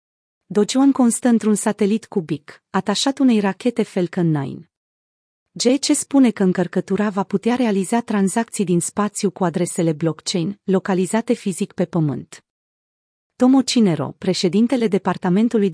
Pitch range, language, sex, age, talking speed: 175-225 Hz, Romanian, female, 30-49, 120 wpm